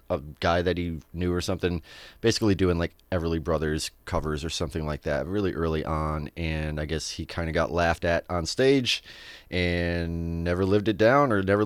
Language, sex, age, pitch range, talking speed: English, male, 30-49, 85-110 Hz, 195 wpm